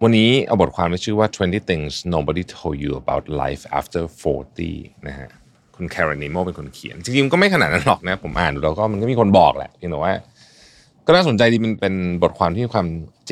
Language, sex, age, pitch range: Thai, male, 30-49, 85-115 Hz